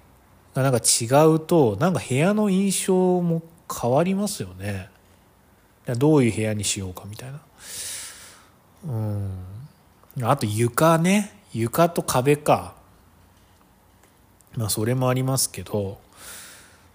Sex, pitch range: male, 100-155 Hz